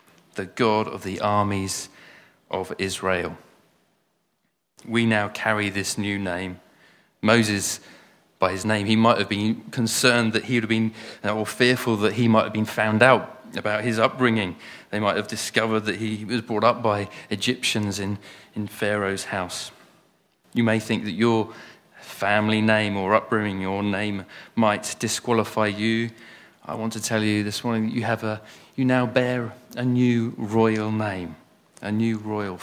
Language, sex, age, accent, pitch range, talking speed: English, male, 30-49, British, 105-120 Hz, 165 wpm